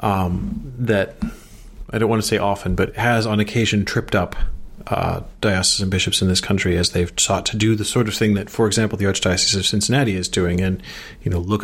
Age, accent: 30-49, American